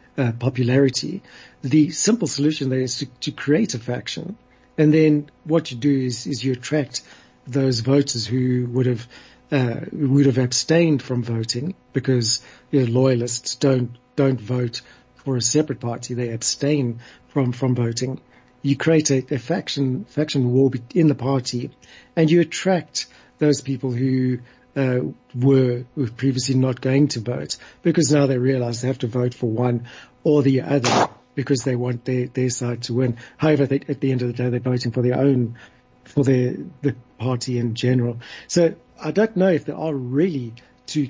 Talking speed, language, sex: 175 wpm, English, male